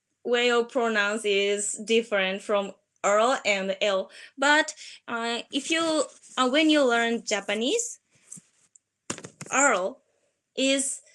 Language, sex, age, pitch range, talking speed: English, female, 20-39, 210-270 Hz, 110 wpm